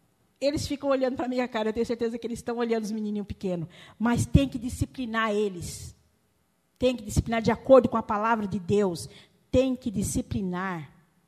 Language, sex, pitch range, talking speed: Portuguese, female, 205-280 Hz, 185 wpm